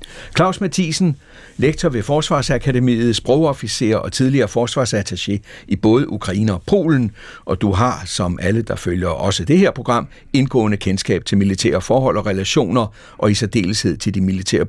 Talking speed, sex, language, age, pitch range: 155 wpm, male, Danish, 60-79, 95-135 Hz